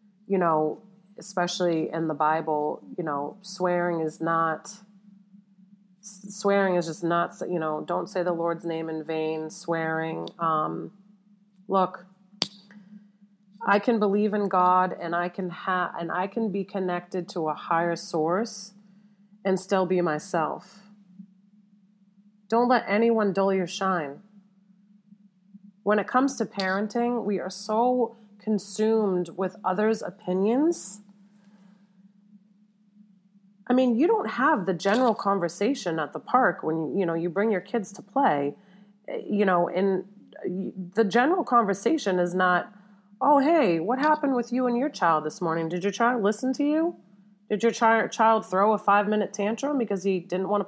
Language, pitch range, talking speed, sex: English, 180-210 Hz, 145 wpm, female